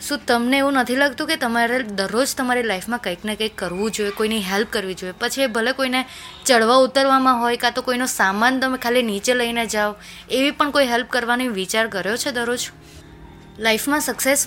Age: 20-39